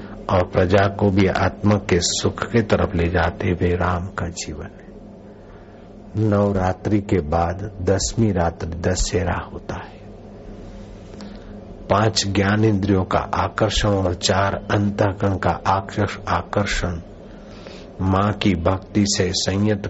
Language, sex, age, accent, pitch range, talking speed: Hindi, male, 60-79, native, 90-105 Hz, 120 wpm